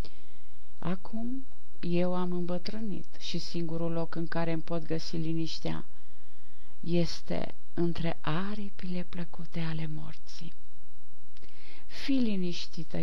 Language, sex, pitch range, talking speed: Romanian, female, 165-210 Hz, 95 wpm